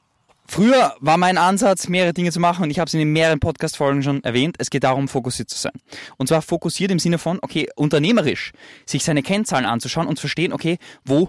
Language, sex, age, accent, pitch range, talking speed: German, male, 20-39, German, 135-175 Hz, 220 wpm